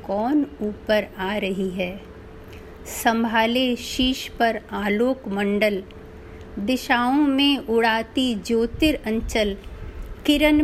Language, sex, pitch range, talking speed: Hindi, female, 210-265 Hz, 90 wpm